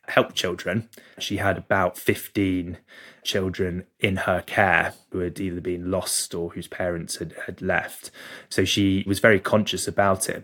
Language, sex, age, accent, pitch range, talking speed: English, male, 20-39, British, 95-105 Hz, 160 wpm